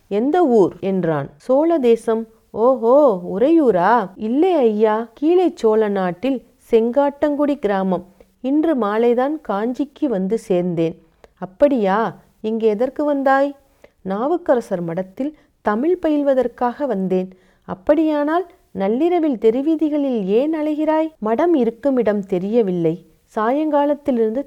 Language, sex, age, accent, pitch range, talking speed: Tamil, female, 40-59, native, 190-280 Hz, 90 wpm